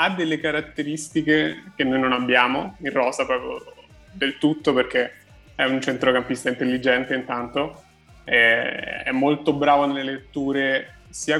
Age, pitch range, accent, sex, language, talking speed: 20-39, 130-145 Hz, native, male, Italian, 130 wpm